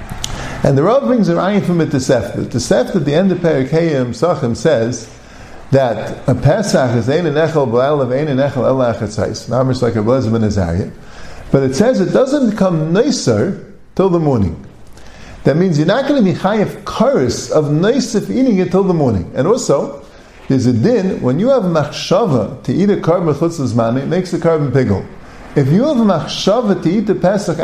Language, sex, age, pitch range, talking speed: English, male, 50-69, 140-200 Hz, 200 wpm